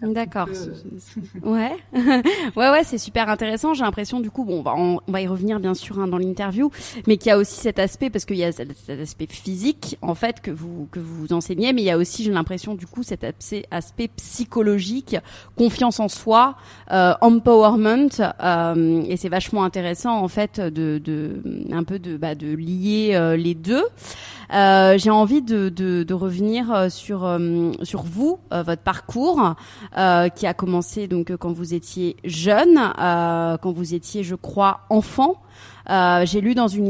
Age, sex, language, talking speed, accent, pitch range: 30-49, female, French, 190 wpm, French, 175-225 Hz